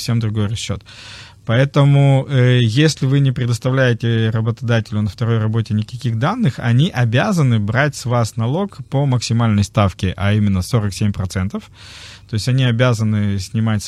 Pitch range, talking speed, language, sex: 105-130 Hz, 140 wpm, Russian, male